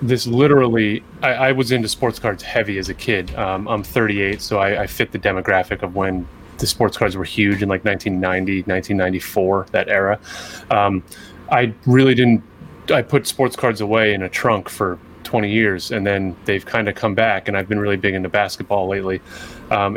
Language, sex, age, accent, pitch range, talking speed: English, male, 30-49, American, 95-115 Hz, 190 wpm